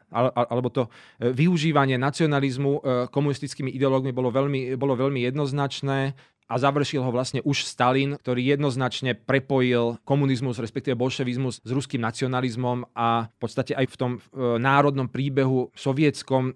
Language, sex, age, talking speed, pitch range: Slovak, male, 30-49, 125 wpm, 125-140 Hz